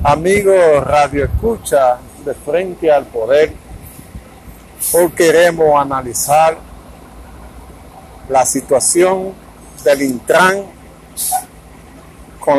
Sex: male